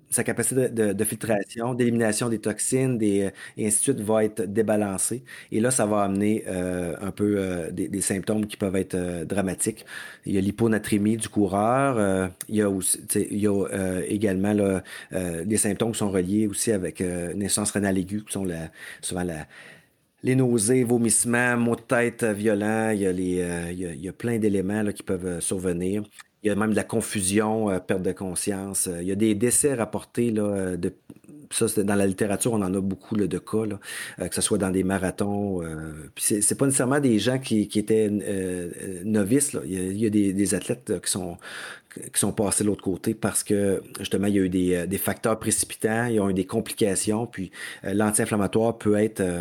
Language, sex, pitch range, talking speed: French, male, 95-110 Hz, 205 wpm